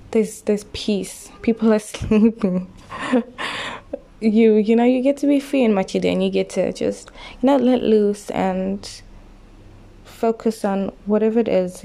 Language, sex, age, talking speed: English, female, 20-39, 155 wpm